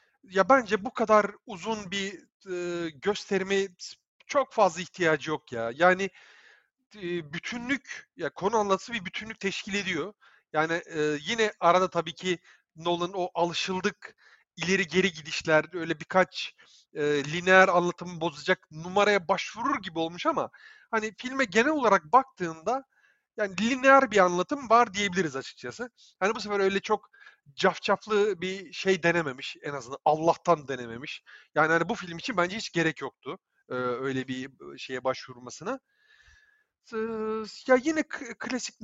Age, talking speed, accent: 40-59, 130 wpm, native